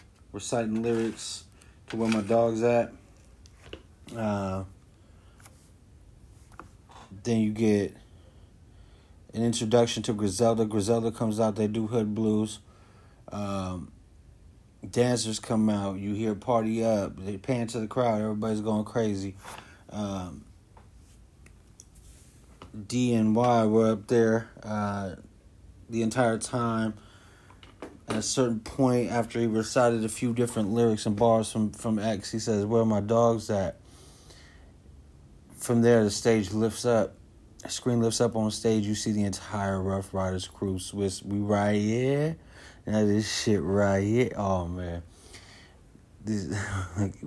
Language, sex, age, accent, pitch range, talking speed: English, male, 30-49, American, 95-115 Hz, 130 wpm